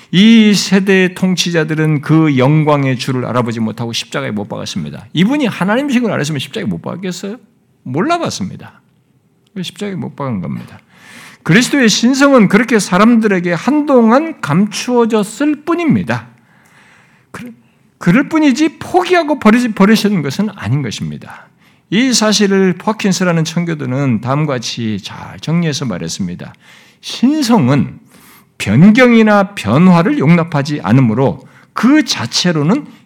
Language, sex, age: Korean, male, 50-69